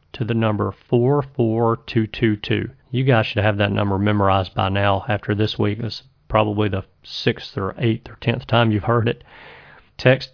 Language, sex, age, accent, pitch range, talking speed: English, male, 40-59, American, 110-135 Hz, 170 wpm